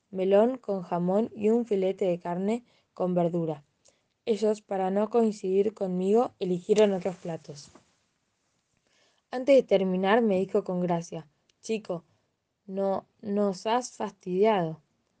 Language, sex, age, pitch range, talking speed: Spanish, female, 10-29, 180-220 Hz, 120 wpm